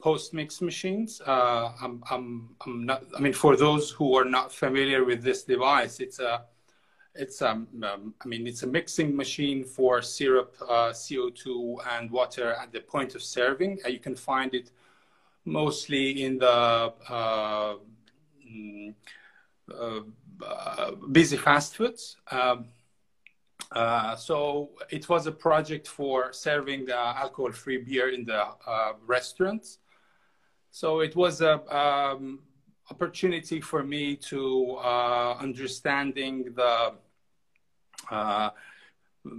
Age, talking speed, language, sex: 40-59, 125 wpm, English, male